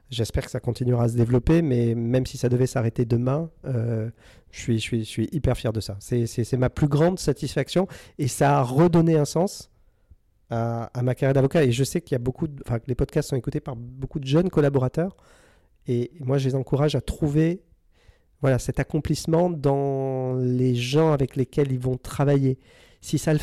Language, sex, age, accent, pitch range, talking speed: French, male, 40-59, French, 125-155 Hz, 200 wpm